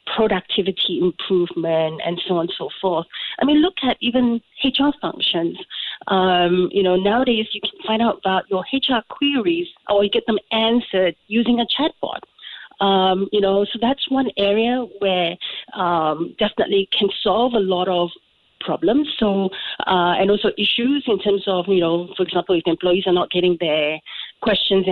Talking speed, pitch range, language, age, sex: 170 wpm, 185-240 Hz, English, 40-59, female